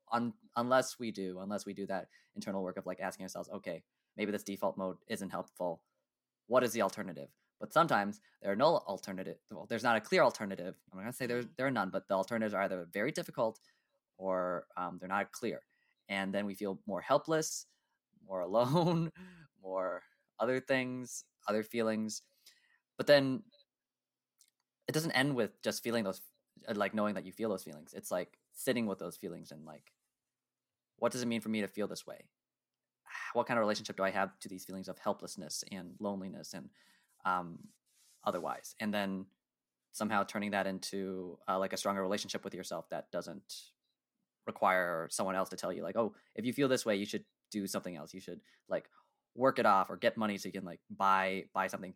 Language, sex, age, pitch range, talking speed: English, male, 20-39, 95-120 Hz, 195 wpm